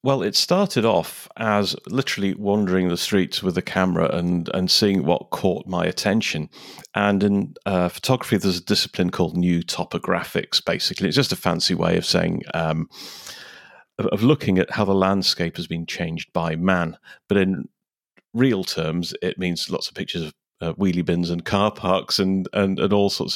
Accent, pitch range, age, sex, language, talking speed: British, 90-110 Hz, 40-59, male, English, 175 wpm